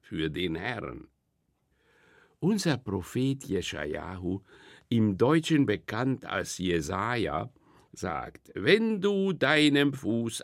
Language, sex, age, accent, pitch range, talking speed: German, male, 60-79, German, 110-155 Hz, 90 wpm